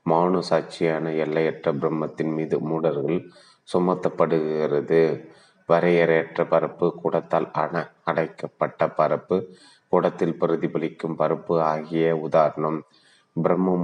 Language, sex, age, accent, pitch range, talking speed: Tamil, male, 30-49, native, 80-85 Hz, 80 wpm